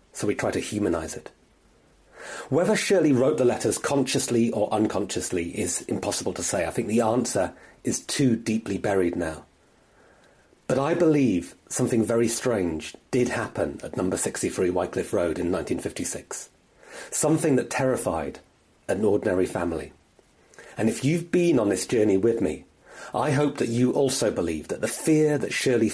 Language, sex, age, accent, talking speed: English, male, 30-49, British, 155 wpm